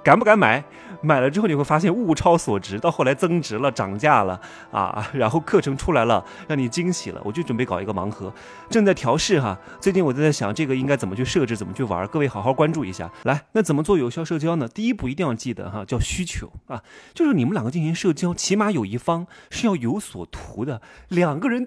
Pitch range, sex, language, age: 130-215 Hz, male, Chinese, 30-49